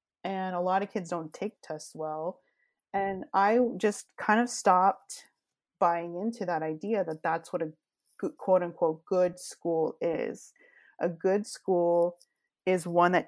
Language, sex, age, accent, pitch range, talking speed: English, female, 20-39, American, 175-225 Hz, 155 wpm